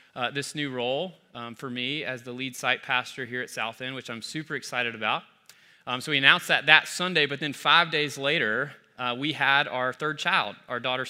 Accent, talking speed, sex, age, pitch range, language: American, 220 wpm, male, 30-49, 125-150 Hz, English